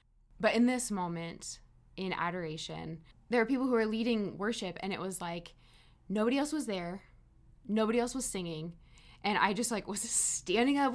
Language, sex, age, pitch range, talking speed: English, female, 20-39, 165-210 Hz, 175 wpm